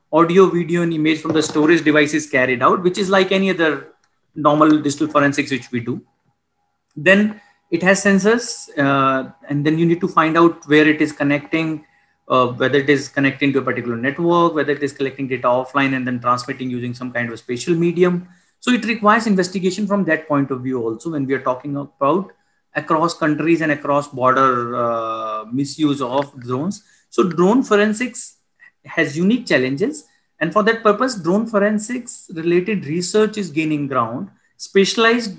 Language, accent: English, Indian